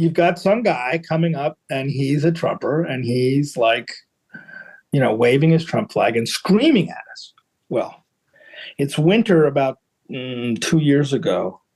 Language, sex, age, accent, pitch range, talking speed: English, male, 50-69, American, 135-180 Hz, 160 wpm